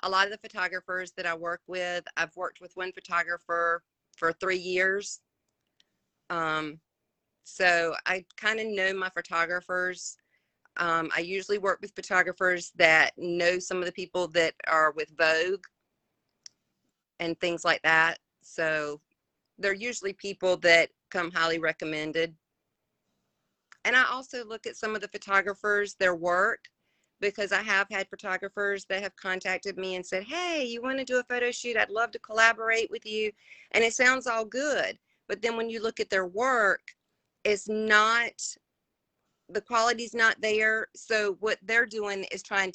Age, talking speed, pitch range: 40-59, 160 wpm, 170-215 Hz